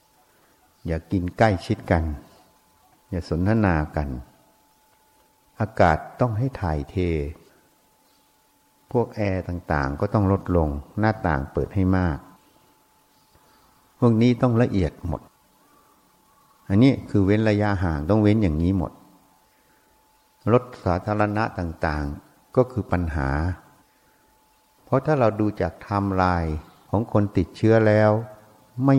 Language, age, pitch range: Thai, 60-79, 85-110 Hz